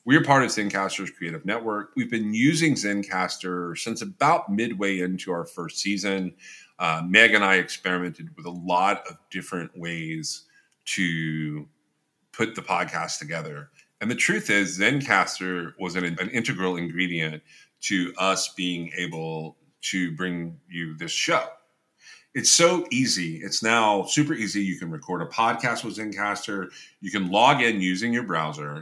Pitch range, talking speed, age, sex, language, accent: 85-120 Hz, 150 wpm, 30-49, male, English, American